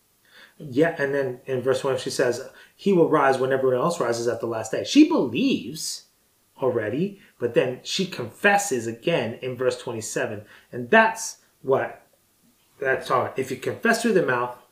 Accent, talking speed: American, 165 wpm